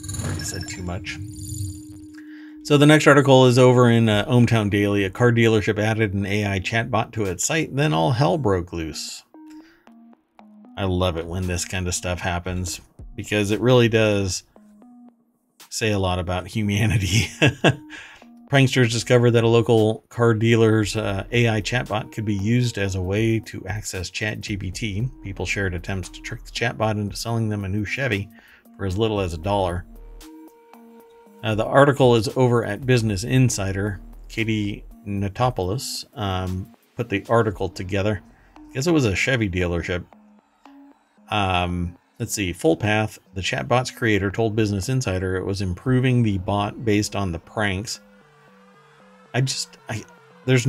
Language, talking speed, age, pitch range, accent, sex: English, 155 wpm, 50-69, 100-125 Hz, American, male